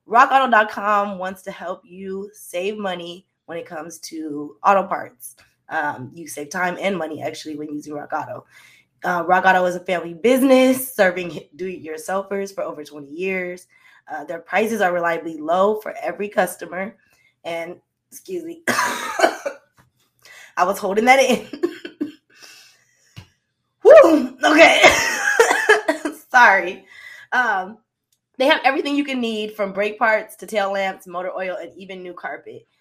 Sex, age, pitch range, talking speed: female, 20-39, 175-230 Hz, 135 wpm